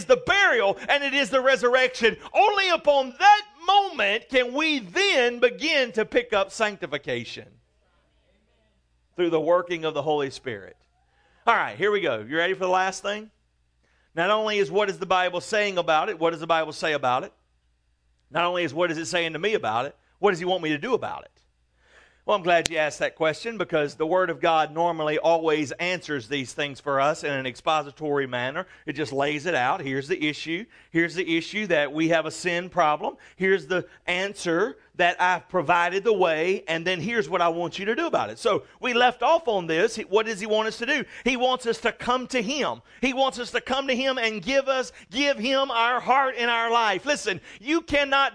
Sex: male